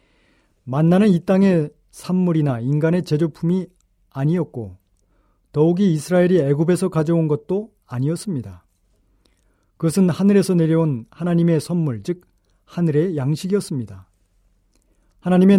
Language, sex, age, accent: Korean, male, 40-59, native